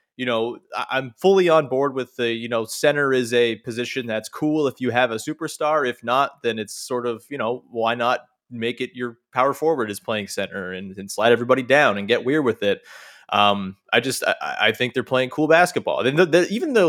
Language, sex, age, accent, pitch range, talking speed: English, male, 20-39, American, 115-145 Hz, 220 wpm